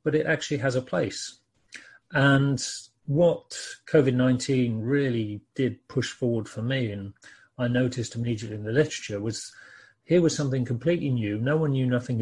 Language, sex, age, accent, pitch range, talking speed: English, male, 40-59, British, 115-135 Hz, 155 wpm